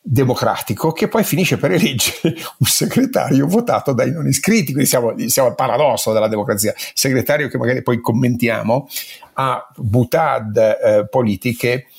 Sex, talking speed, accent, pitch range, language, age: male, 140 wpm, native, 105-125 Hz, Italian, 50-69